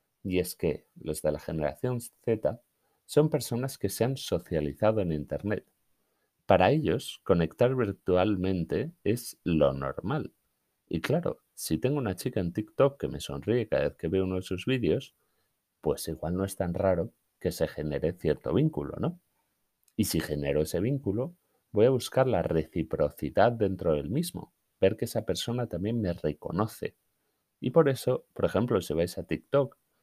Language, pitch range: Spanish, 85-125 Hz